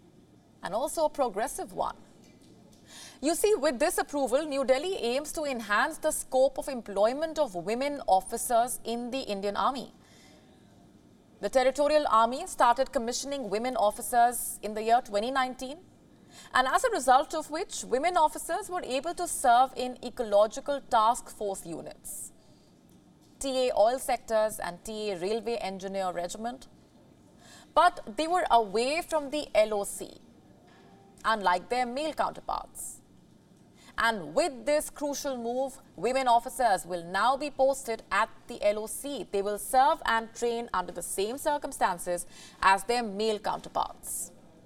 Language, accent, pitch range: English, Indian, 220-290 Hz